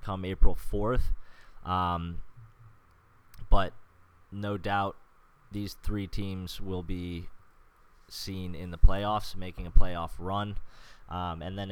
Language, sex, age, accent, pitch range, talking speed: English, male, 20-39, American, 90-105 Hz, 120 wpm